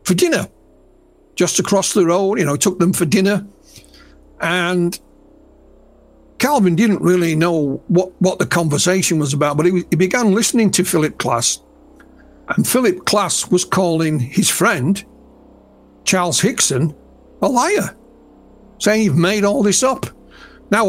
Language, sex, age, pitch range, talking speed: Polish, male, 60-79, 160-200 Hz, 140 wpm